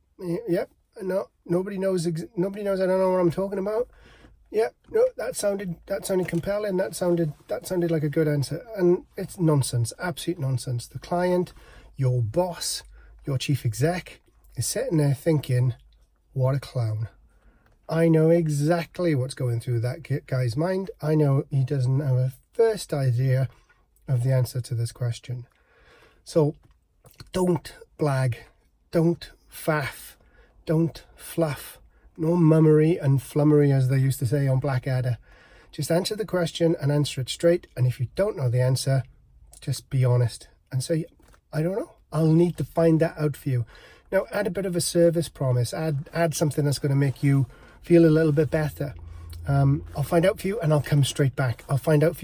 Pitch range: 130-170 Hz